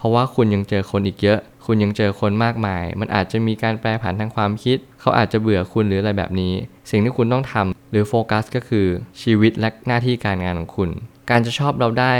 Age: 20-39